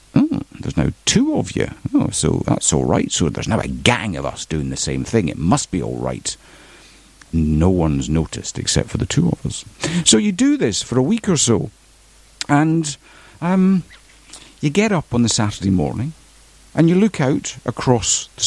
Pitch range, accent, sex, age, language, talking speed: 85-125 Hz, British, male, 60-79, English, 190 wpm